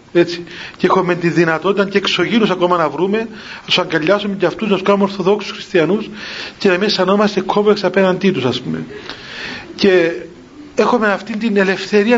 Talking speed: 170 wpm